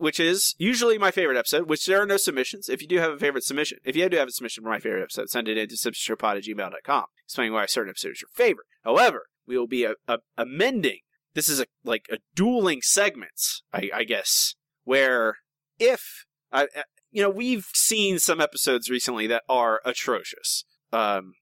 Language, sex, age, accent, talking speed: English, male, 30-49, American, 210 wpm